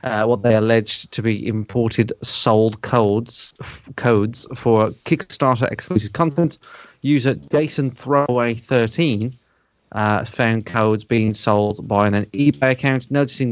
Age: 30-49